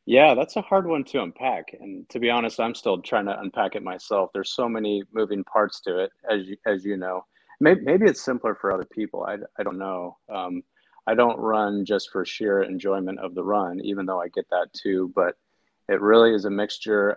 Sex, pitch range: male, 95-115 Hz